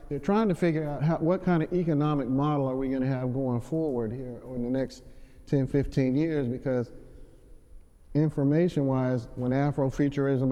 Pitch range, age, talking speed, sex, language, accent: 130-150 Hz, 50-69, 165 wpm, male, English, American